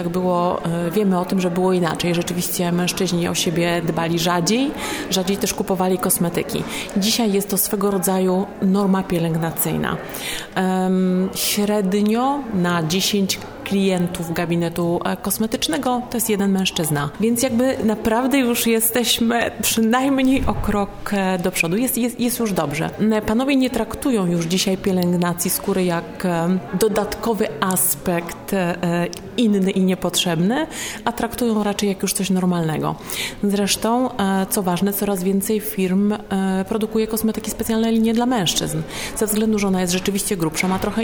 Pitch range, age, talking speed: 180-220 Hz, 30-49, 135 wpm